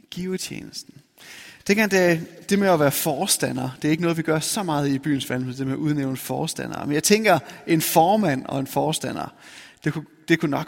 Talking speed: 215 wpm